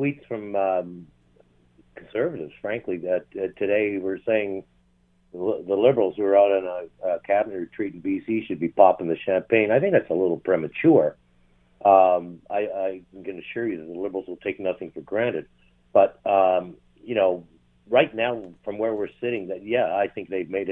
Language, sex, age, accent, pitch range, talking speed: English, male, 60-79, American, 80-105 Hz, 185 wpm